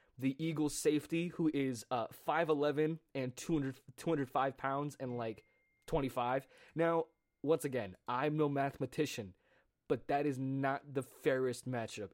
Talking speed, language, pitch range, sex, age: 135 wpm, English, 110-150 Hz, male, 20-39